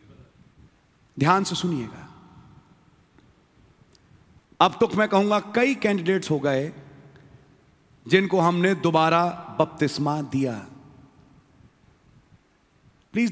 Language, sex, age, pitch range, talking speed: English, male, 40-59, 140-200 Hz, 75 wpm